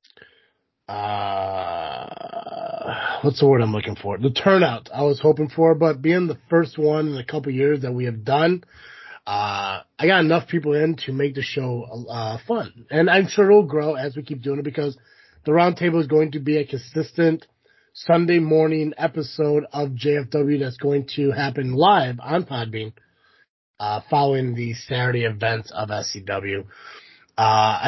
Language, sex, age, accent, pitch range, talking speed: English, male, 30-49, American, 115-160 Hz, 170 wpm